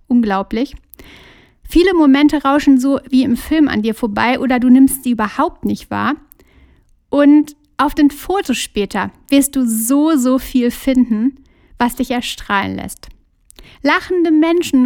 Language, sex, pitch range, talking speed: German, female, 235-280 Hz, 140 wpm